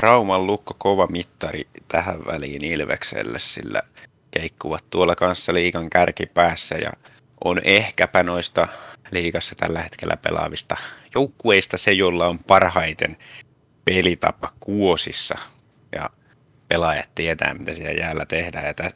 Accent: native